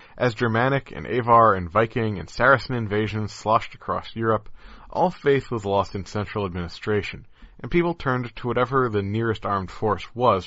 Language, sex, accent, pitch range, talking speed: English, male, American, 100-130 Hz, 165 wpm